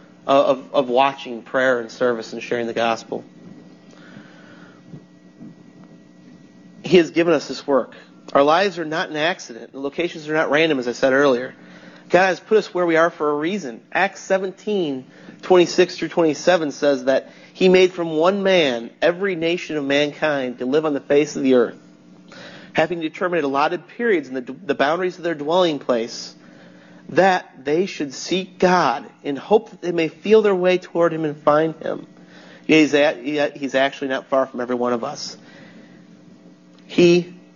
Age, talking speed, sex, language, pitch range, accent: 30-49, 170 wpm, male, English, 110-170 Hz, American